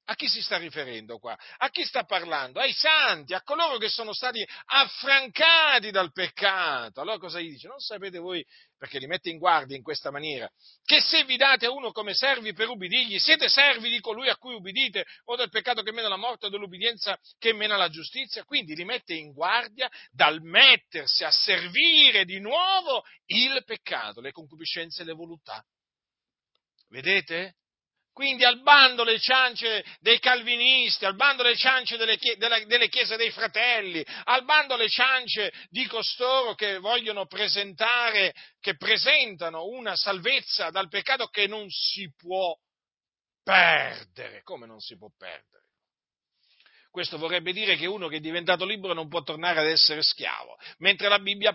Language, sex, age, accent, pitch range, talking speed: Italian, male, 50-69, native, 185-250 Hz, 165 wpm